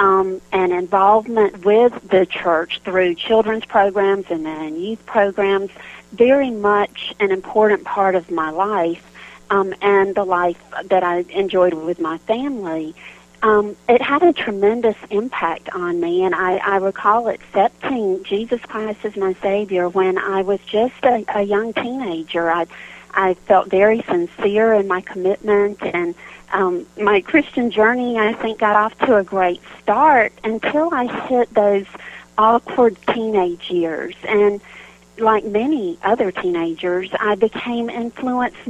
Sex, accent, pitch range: female, American, 185-220 Hz